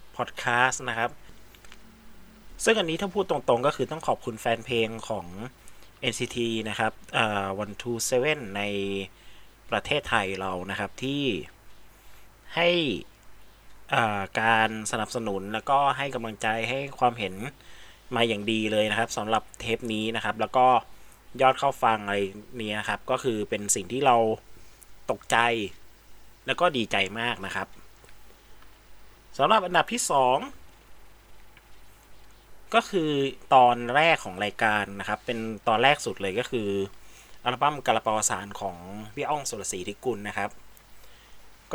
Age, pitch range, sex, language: 20-39, 100-125 Hz, male, Thai